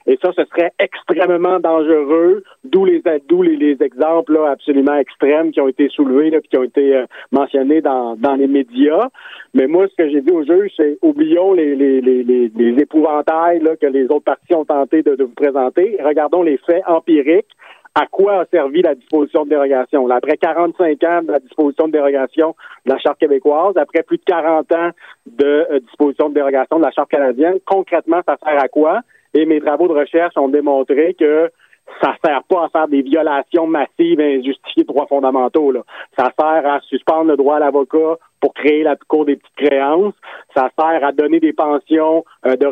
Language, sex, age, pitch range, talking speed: French, male, 50-69, 140-165 Hz, 200 wpm